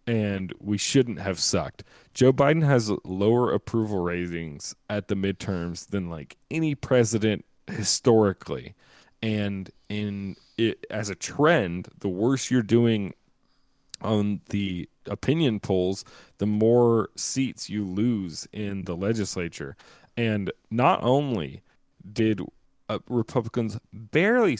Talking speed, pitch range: 115 wpm, 95-120 Hz